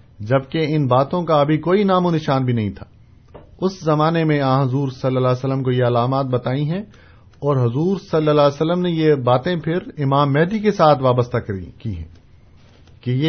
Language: Urdu